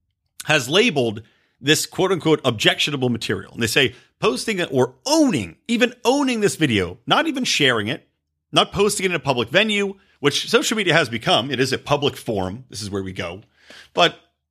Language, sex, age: English, male, 40-59